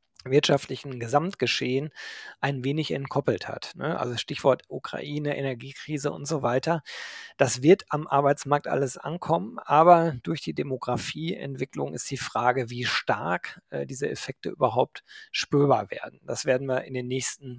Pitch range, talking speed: 125-155 Hz, 135 wpm